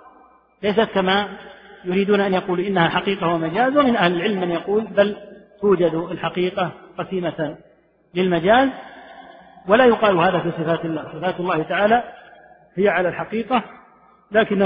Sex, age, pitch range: male, 50-69, 165-205 Hz